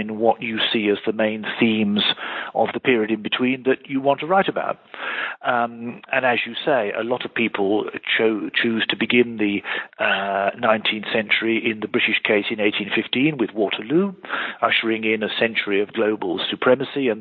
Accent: British